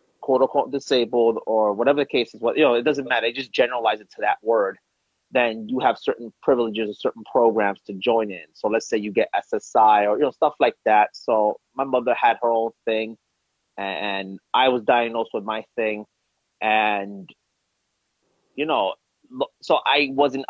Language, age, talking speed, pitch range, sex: English, 30-49, 185 wpm, 110-130 Hz, male